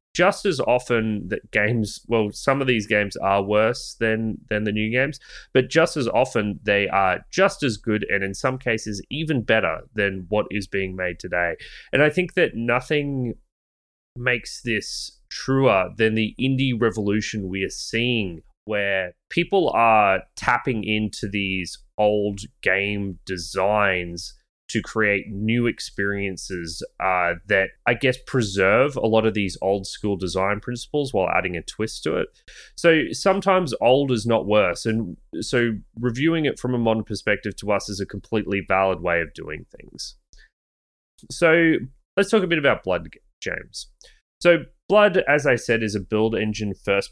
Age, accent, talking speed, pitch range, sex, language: 20-39, Australian, 160 wpm, 95-125 Hz, male, English